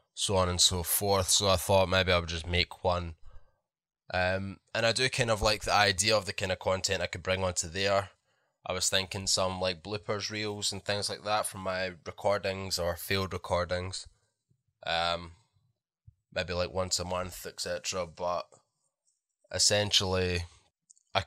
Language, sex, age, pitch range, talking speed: English, male, 10-29, 90-100 Hz, 170 wpm